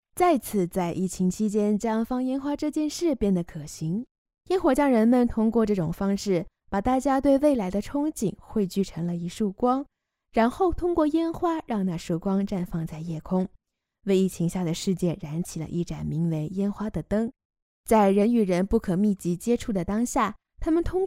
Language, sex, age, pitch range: Chinese, female, 20-39, 185-265 Hz